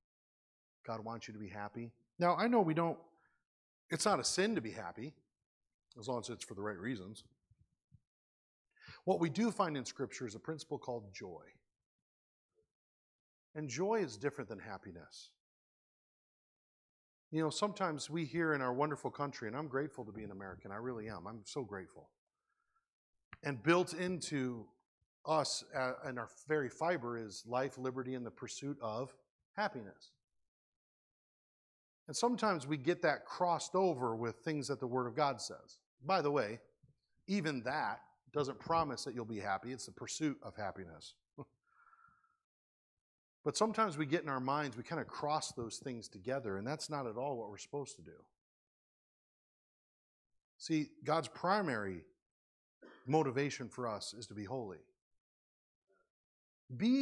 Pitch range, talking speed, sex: 115-160 Hz, 155 wpm, male